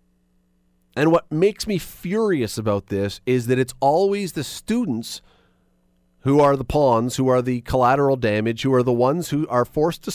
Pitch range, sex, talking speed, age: 95-145 Hz, male, 175 wpm, 40-59